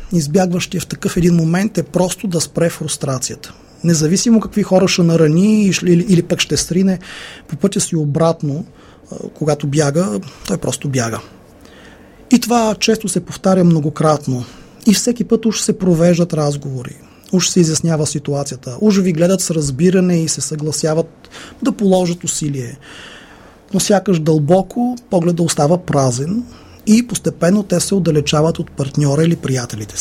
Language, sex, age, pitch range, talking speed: Bulgarian, male, 30-49, 145-185 Hz, 140 wpm